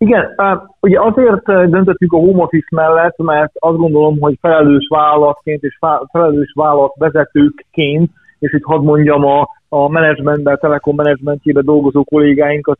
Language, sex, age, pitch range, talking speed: Hungarian, male, 30-49, 145-165 Hz, 140 wpm